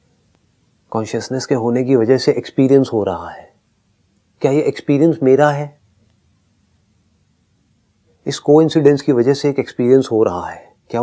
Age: 30-49